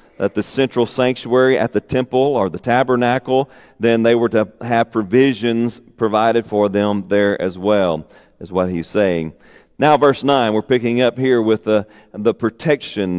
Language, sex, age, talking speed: English, male, 40-59, 170 wpm